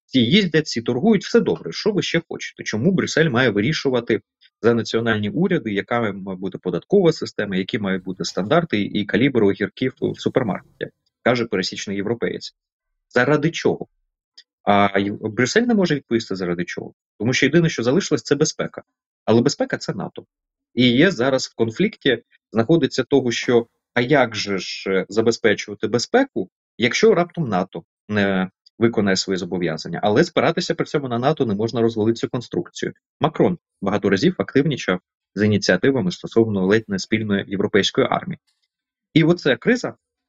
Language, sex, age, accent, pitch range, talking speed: Ukrainian, male, 30-49, native, 105-155 Hz, 150 wpm